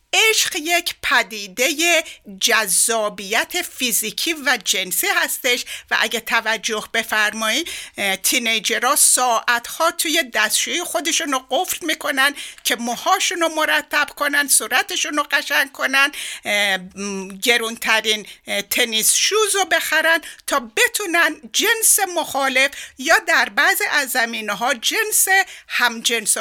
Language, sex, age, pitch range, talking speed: Persian, female, 60-79, 230-355 Hz, 110 wpm